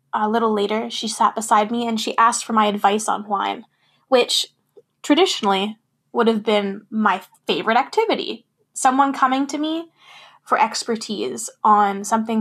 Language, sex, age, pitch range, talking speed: English, female, 10-29, 210-260 Hz, 150 wpm